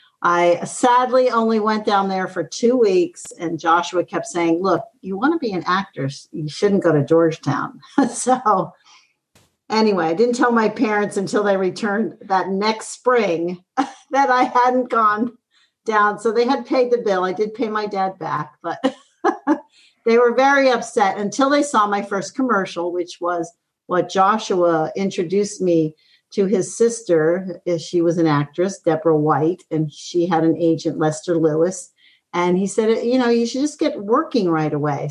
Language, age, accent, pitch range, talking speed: English, 50-69, American, 160-220 Hz, 170 wpm